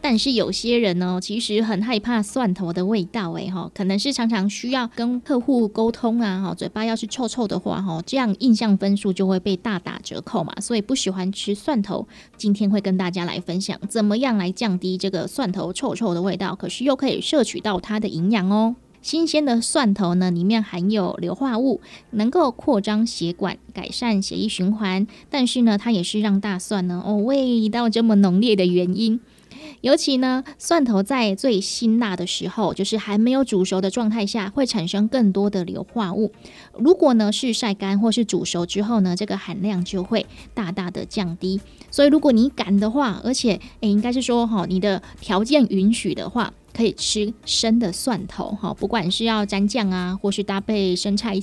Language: Chinese